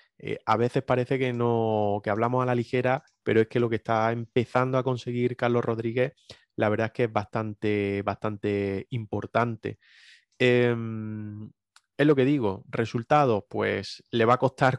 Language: Spanish